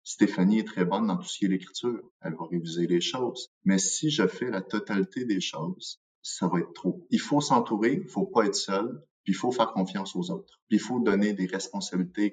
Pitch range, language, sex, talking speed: 95-120 Hz, French, male, 235 wpm